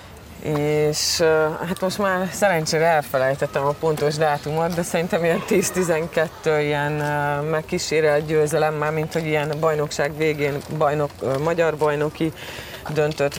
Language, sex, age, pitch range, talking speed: Hungarian, female, 30-49, 145-160 Hz, 115 wpm